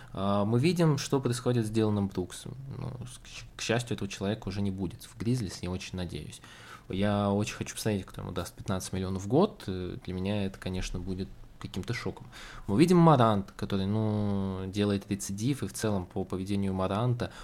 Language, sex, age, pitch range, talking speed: Russian, male, 20-39, 100-130 Hz, 180 wpm